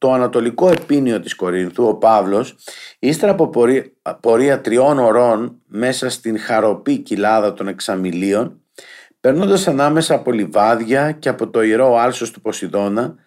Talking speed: 130 wpm